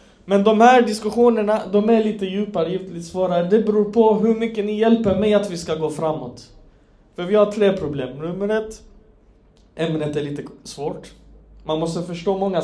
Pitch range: 170-215 Hz